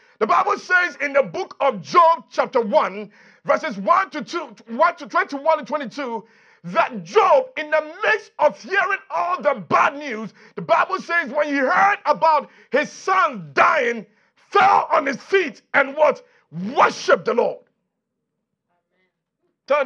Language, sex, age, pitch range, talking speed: English, male, 50-69, 210-355 Hz, 150 wpm